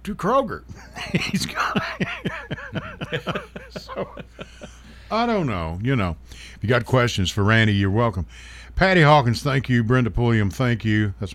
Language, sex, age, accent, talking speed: English, male, 50-69, American, 155 wpm